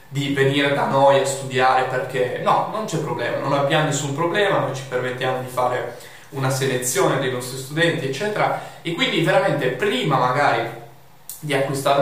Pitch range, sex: 135-170 Hz, male